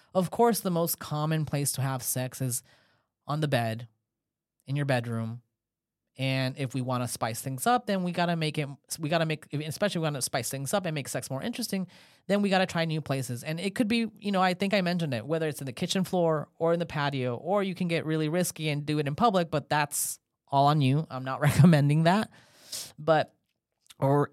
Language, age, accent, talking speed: English, 30-49, American, 235 wpm